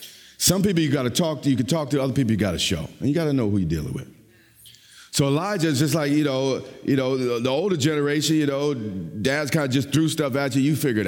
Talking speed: 275 wpm